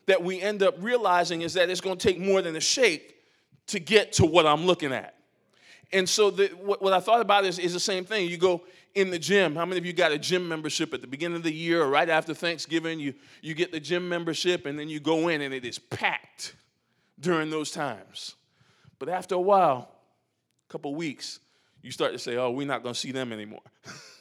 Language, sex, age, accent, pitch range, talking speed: English, male, 20-39, American, 150-185 Hz, 240 wpm